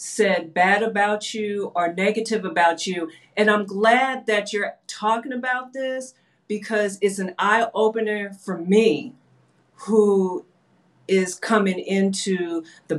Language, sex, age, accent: English, female, 50-69, American